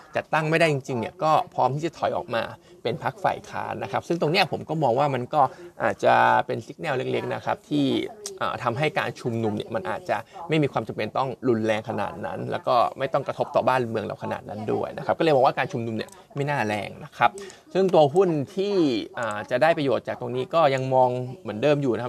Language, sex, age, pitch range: Thai, male, 20-39, 120-160 Hz